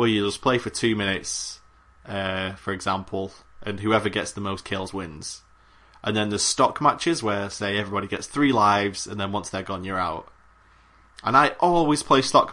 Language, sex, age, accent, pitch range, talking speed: English, male, 20-39, British, 95-125 Hz, 190 wpm